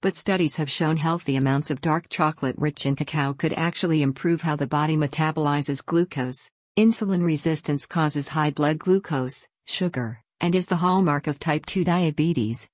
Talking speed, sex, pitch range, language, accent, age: 165 wpm, female, 145-170 Hz, English, American, 50-69